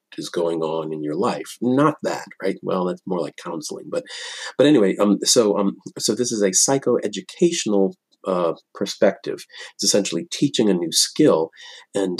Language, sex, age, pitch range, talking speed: English, male, 40-59, 85-110 Hz, 165 wpm